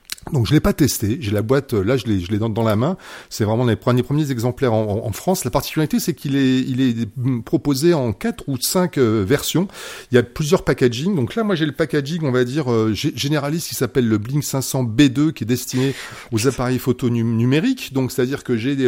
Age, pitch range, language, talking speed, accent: 40-59, 120-155 Hz, French, 230 wpm, French